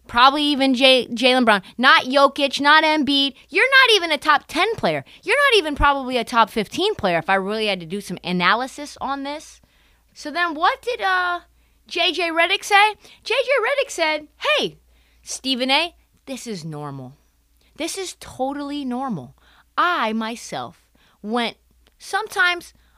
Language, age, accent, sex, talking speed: English, 30-49, American, female, 150 wpm